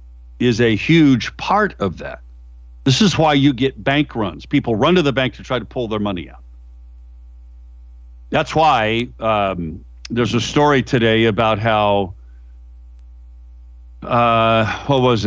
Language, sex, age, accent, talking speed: English, male, 50-69, American, 145 wpm